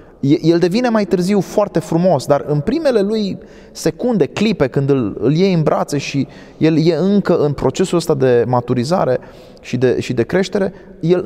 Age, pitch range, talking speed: 20-39, 130-180 Hz, 175 wpm